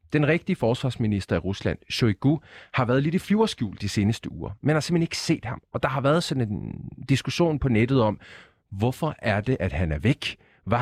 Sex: male